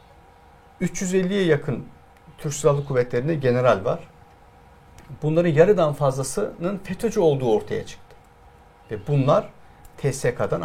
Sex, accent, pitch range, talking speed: male, native, 125-170 Hz, 95 wpm